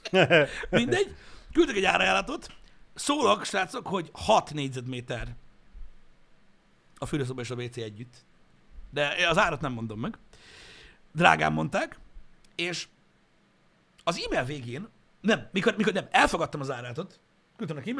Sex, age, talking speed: male, 60-79, 115 wpm